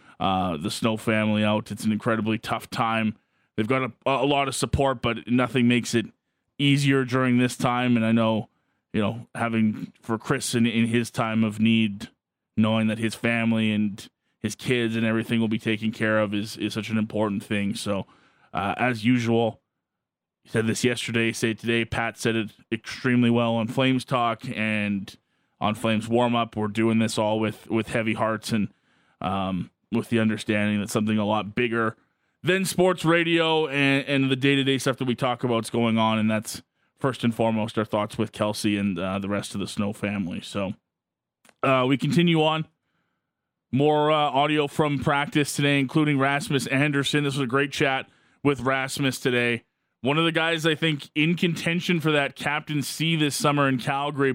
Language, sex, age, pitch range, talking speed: English, male, 20-39, 110-140 Hz, 185 wpm